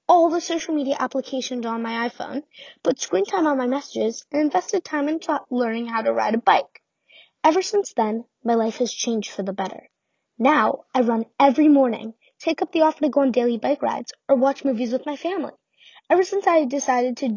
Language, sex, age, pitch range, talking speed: English, female, 10-29, 245-320 Hz, 205 wpm